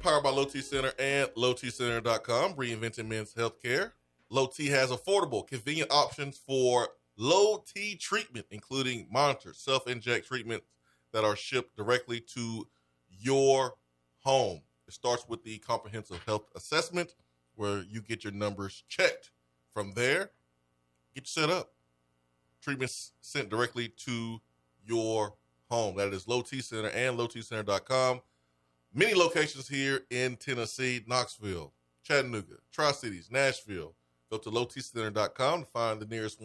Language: English